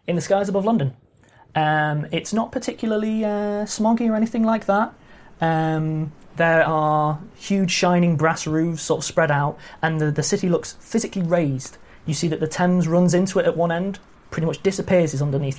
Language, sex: English, male